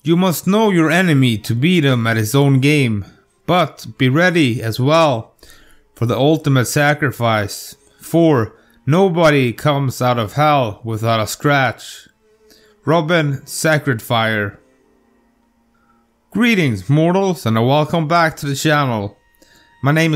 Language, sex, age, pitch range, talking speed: English, male, 30-49, 125-170 Hz, 125 wpm